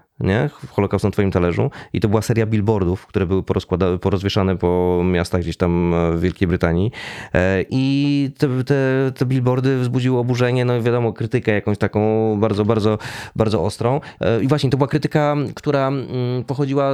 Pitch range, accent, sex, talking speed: 100-130 Hz, native, male, 150 wpm